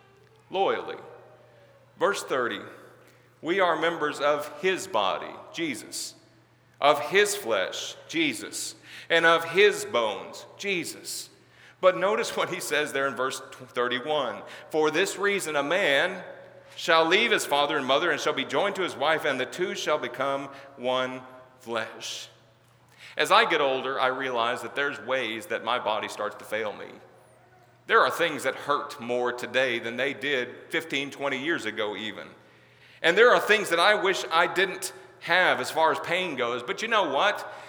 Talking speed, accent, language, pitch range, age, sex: 165 wpm, American, English, 125-185 Hz, 40-59, male